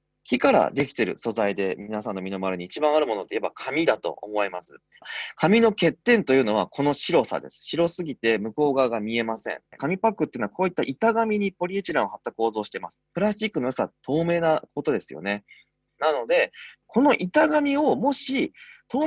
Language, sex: Japanese, male